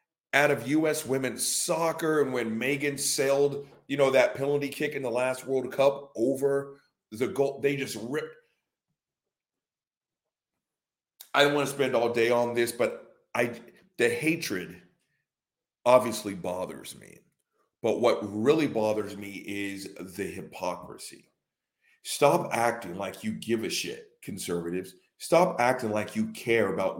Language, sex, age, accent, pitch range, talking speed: English, male, 40-59, American, 110-145 Hz, 140 wpm